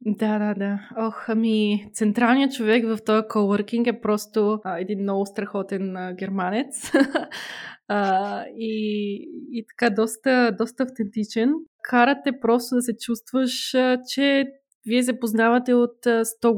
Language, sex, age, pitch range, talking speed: Bulgarian, female, 20-39, 200-260 Hz, 130 wpm